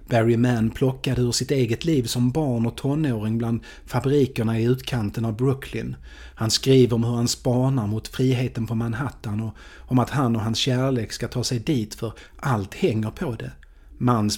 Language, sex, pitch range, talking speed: Swedish, male, 115-135 Hz, 185 wpm